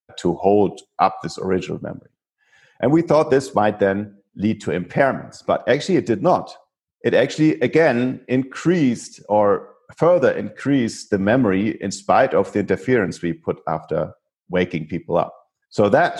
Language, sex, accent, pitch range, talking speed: English, male, German, 95-125 Hz, 155 wpm